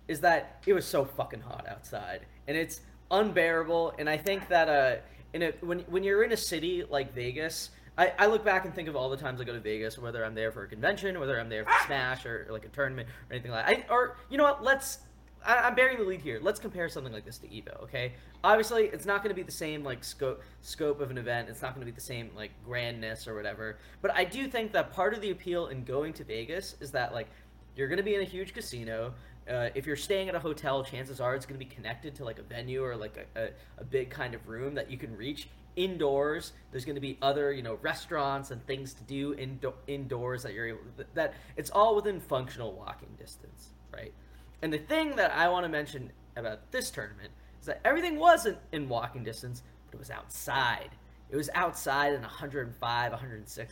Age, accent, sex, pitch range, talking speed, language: 20-39, American, male, 120-180 Hz, 240 wpm, English